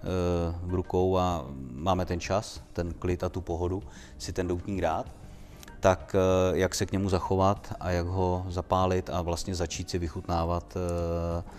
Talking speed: 155 wpm